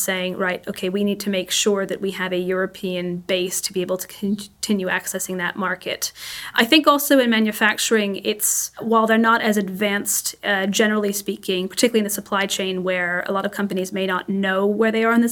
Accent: American